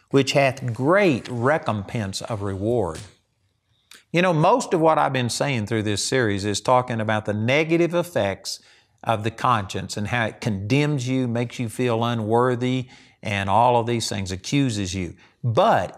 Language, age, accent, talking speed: English, 50-69, American, 160 wpm